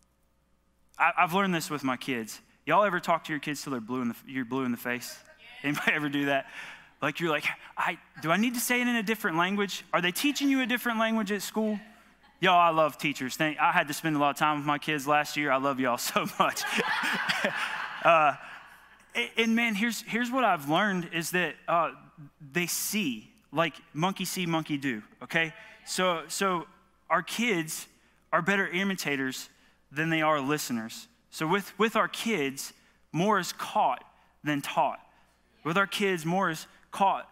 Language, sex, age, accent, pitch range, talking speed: English, male, 20-39, American, 130-195 Hz, 190 wpm